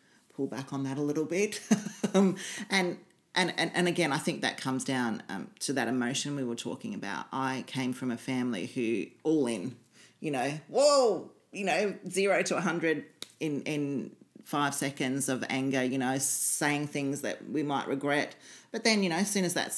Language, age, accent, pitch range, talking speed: English, 40-59, Australian, 135-195 Hz, 190 wpm